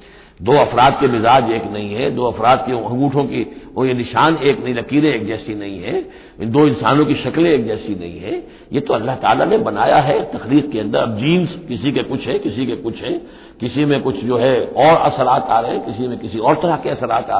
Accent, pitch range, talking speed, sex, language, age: native, 120-160 Hz, 240 wpm, male, Hindi, 60-79